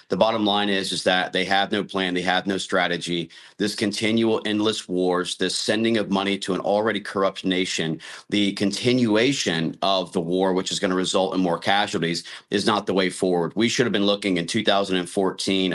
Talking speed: 200 wpm